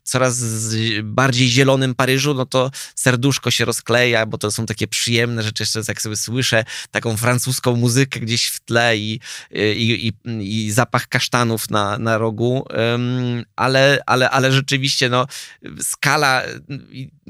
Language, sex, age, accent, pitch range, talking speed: Polish, male, 20-39, native, 120-140 Hz, 140 wpm